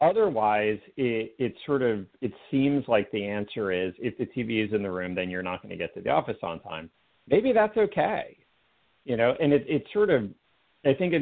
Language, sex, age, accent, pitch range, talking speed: English, male, 40-59, American, 100-130 Hz, 215 wpm